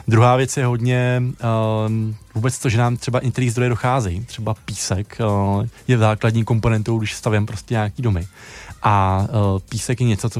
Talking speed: 175 wpm